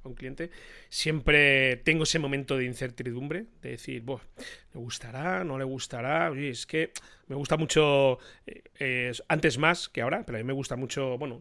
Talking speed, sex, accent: 185 wpm, male, Spanish